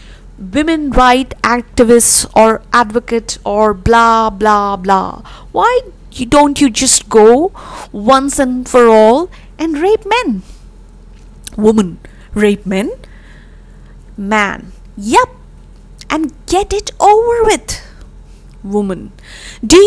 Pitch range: 205-265 Hz